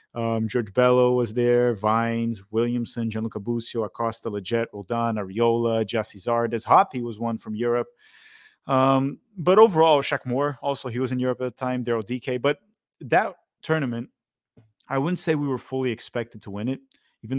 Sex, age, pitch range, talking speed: male, 30-49, 115-140 Hz, 170 wpm